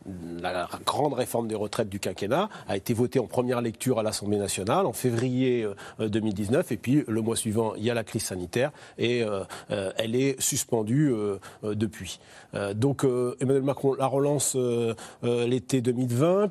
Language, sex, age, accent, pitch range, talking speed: French, male, 40-59, French, 110-140 Hz, 155 wpm